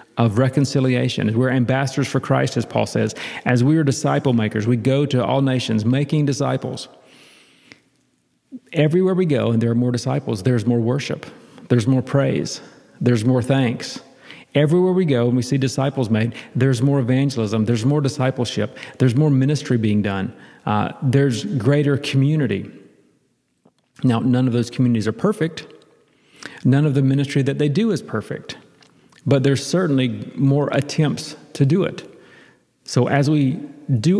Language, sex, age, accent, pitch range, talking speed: English, male, 40-59, American, 120-140 Hz, 155 wpm